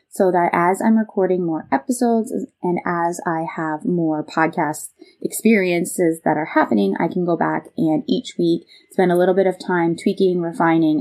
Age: 20-39